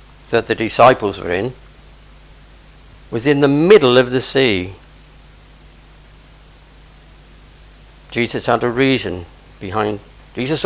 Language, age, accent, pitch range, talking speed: English, 50-69, British, 100-145 Hz, 100 wpm